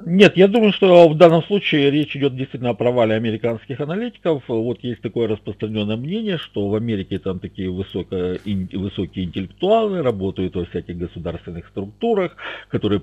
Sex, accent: male, native